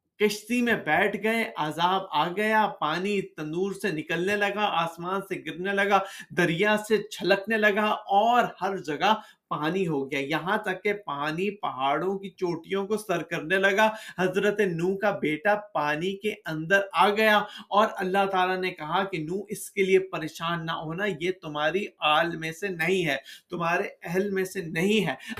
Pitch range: 165-210 Hz